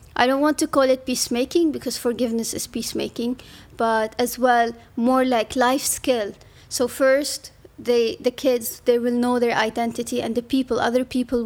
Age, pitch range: 30-49, 230-255 Hz